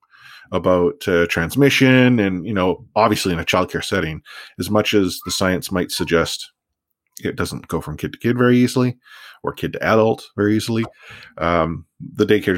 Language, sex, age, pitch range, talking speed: English, male, 30-49, 100-135 Hz, 170 wpm